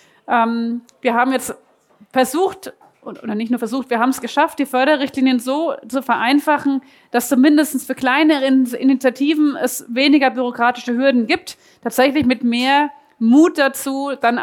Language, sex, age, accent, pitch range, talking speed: German, female, 30-49, German, 240-280 Hz, 140 wpm